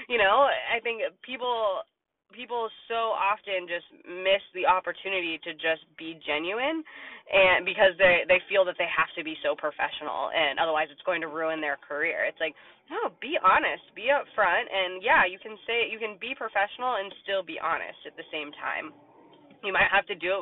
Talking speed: 195 wpm